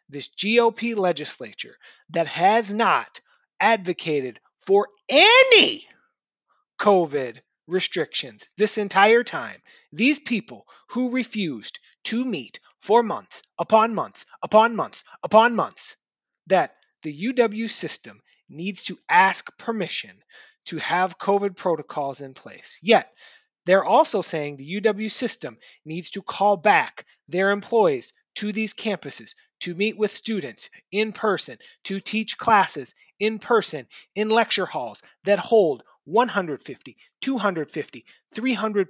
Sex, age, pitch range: male, 30-49, 185-235 Hz